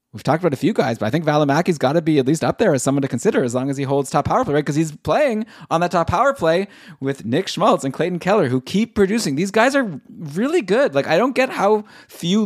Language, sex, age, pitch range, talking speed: English, male, 20-39, 120-180 Hz, 285 wpm